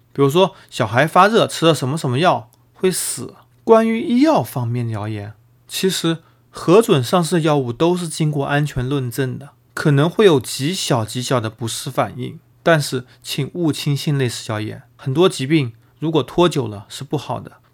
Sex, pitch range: male, 125-170 Hz